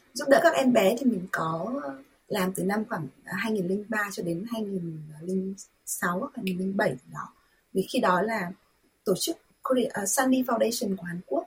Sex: female